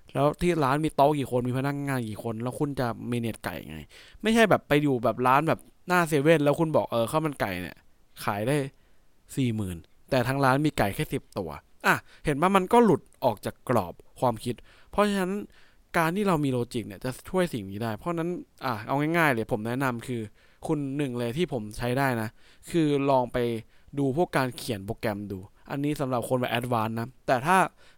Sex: male